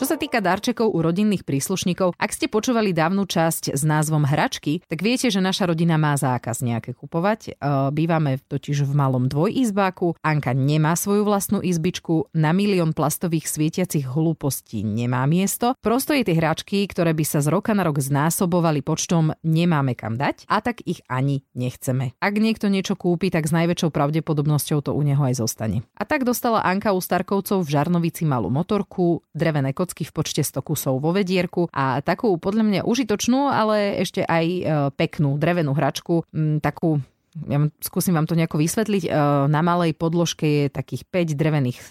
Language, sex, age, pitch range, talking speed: Slovak, female, 30-49, 145-185 Hz, 170 wpm